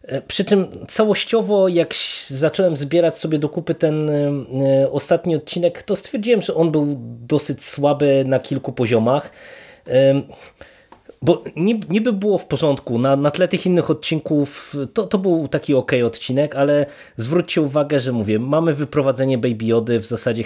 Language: Polish